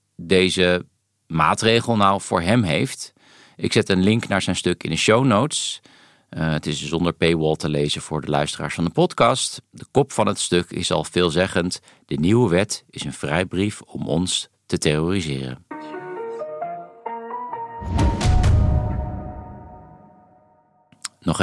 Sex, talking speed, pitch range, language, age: male, 135 wpm, 90-125 Hz, Dutch, 50-69